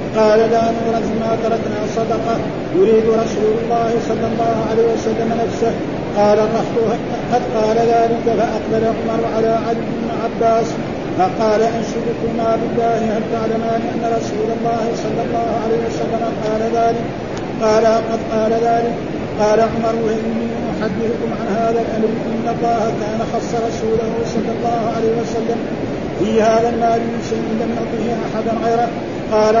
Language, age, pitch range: Arabic, 50-69, 225-230 Hz